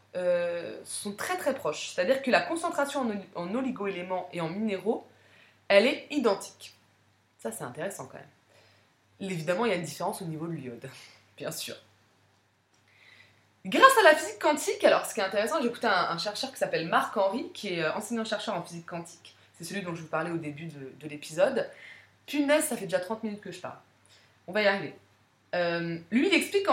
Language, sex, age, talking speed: French, female, 20-39, 195 wpm